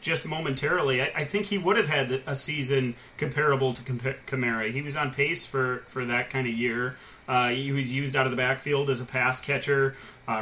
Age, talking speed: 30-49, 215 wpm